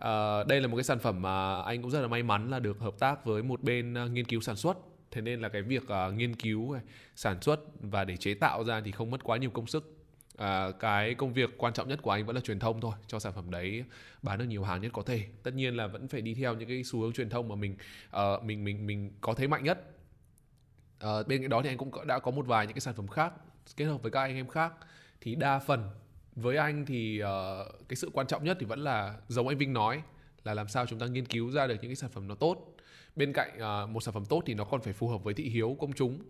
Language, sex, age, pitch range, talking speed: Vietnamese, male, 20-39, 110-140 Hz, 280 wpm